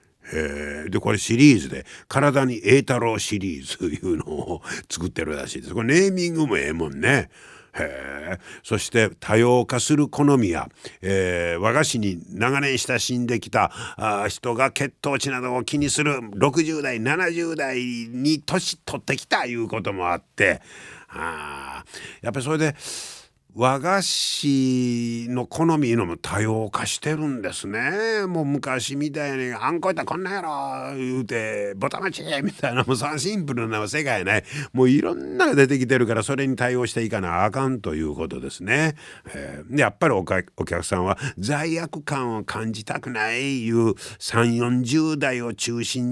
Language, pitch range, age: Japanese, 110-145 Hz, 50-69